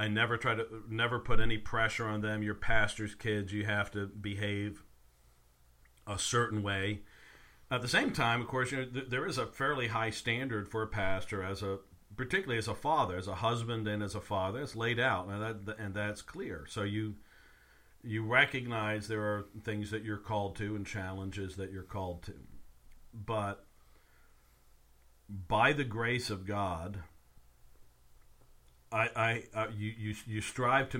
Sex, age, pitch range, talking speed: male, 50-69, 95-115 Hz, 170 wpm